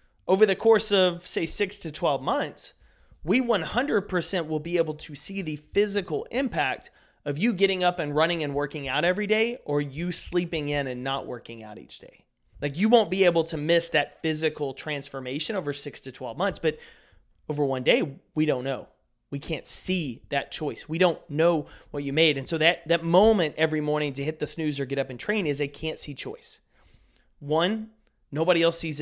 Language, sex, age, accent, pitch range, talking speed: English, male, 30-49, American, 135-180 Hz, 205 wpm